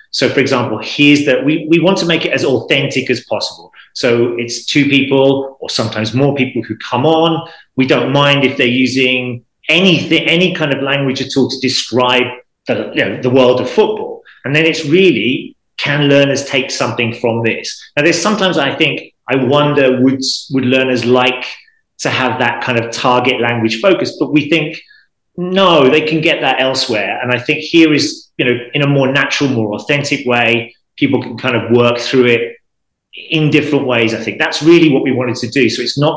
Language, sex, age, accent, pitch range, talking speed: English, male, 30-49, British, 120-155 Hz, 200 wpm